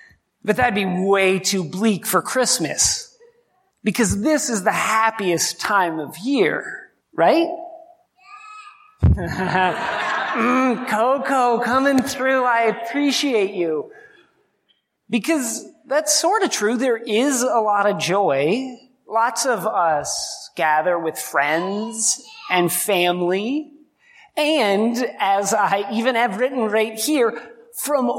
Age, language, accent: 30-49, English, American